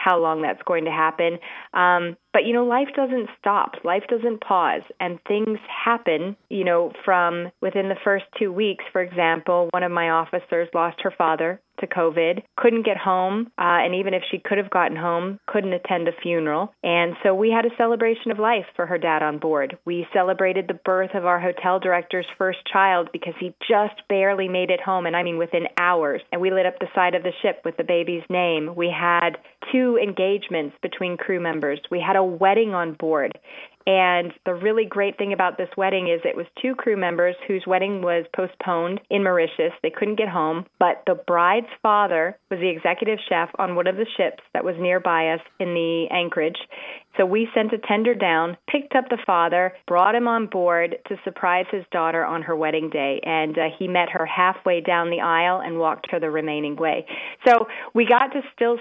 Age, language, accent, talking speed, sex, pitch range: 20-39, English, American, 205 wpm, female, 170-200 Hz